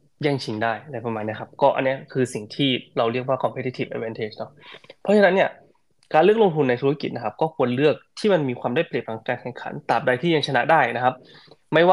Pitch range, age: 125-160 Hz, 20-39